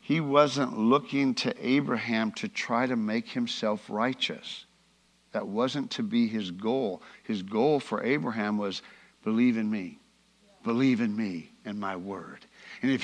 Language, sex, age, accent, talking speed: English, male, 60-79, American, 150 wpm